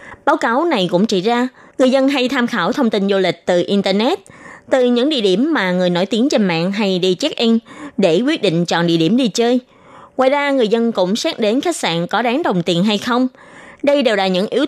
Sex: female